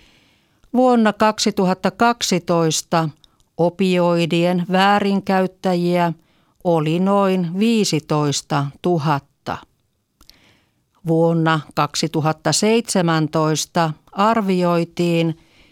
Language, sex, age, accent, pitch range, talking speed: Finnish, female, 50-69, native, 160-195 Hz, 40 wpm